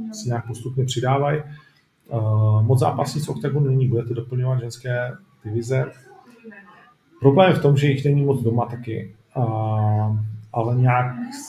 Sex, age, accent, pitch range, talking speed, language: male, 40-59, native, 115-145 Hz, 125 wpm, Czech